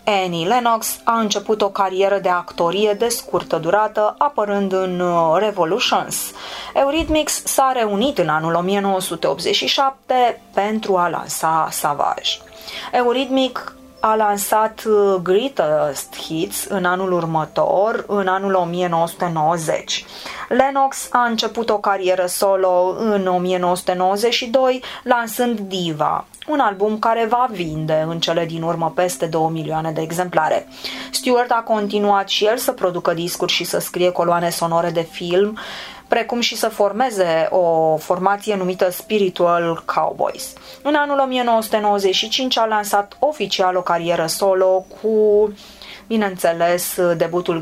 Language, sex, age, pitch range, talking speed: Romanian, female, 20-39, 175-225 Hz, 120 wpm